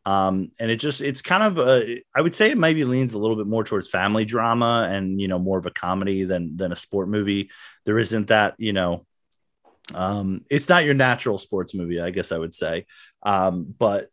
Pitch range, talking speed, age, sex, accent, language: 90-120 Hz, 220 wpm, 30-49, male, American, English